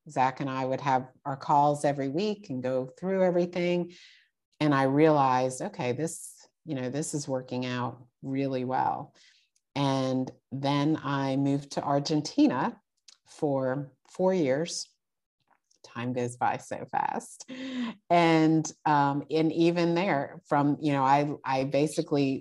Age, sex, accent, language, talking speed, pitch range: 50-69, female, American, English, 135 wpm, 130-160 Hz